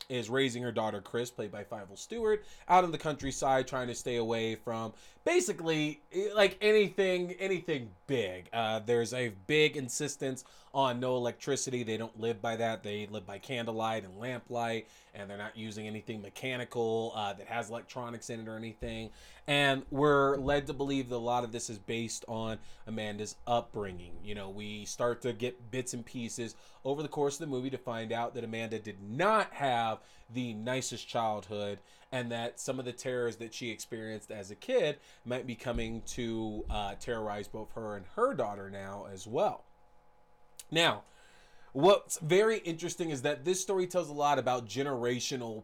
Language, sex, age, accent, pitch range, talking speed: English, male, 20-39, American, 110-135 Hz, 180 wpm